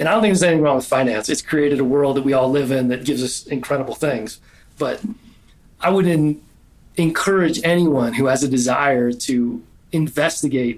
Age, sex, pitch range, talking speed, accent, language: 30-49, male, 130-165 Hz, 190 wpm, American, English